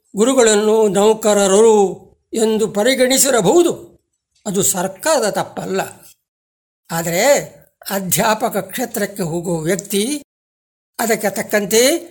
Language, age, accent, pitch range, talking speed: Kannada, 60-79, native, 180-230 Hz, 70 wpm